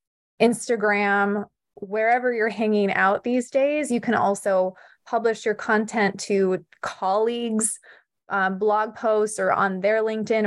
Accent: American